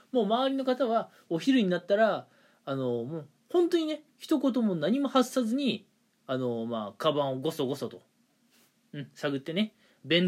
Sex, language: male, Japanese